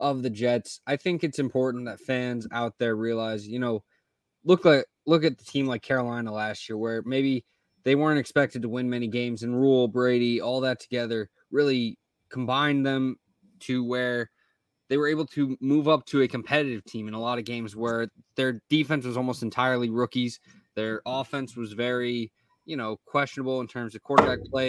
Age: 20-39